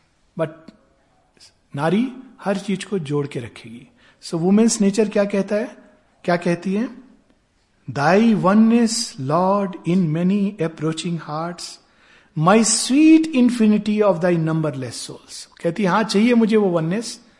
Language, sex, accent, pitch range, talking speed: Hindi, male, native, 150-195 Hz, 130 wpm